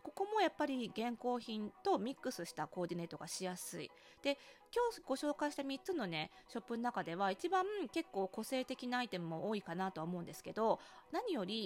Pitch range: 185-280 Hz